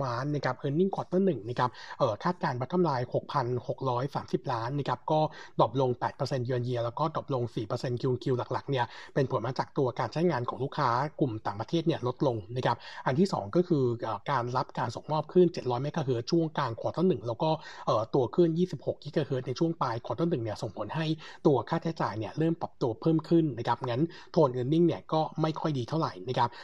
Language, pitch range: Thai, 125-165 Hz